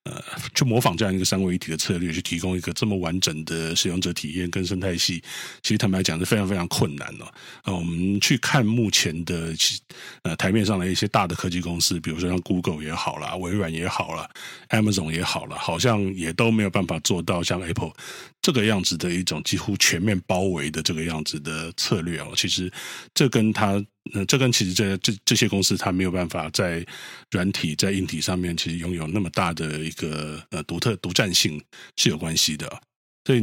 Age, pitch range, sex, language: 30-49, 85-100 Hz, male, Chinese